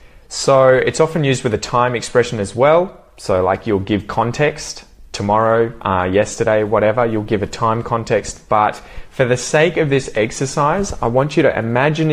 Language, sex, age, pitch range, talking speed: English, male, 20-39, 95-125 Hz, 180 wpm